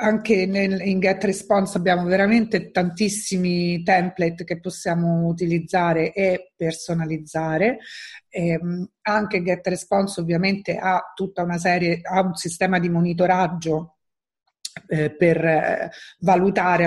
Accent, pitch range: native, 170-210 Hz